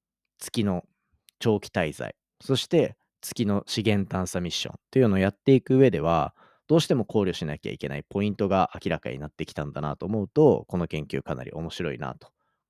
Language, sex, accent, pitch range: Japanese, male, native, 95-150 Hz